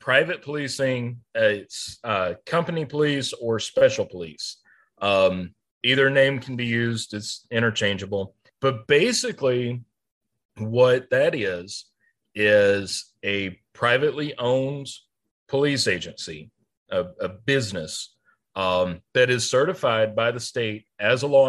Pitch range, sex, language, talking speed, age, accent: 110-135 Hz, male, English, 115 wpm, 40-59, American